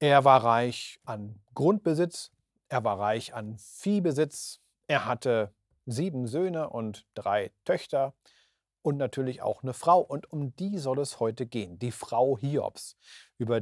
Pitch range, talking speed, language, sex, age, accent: 115-160 Hz, 145 wpm, German, male, 40-59, German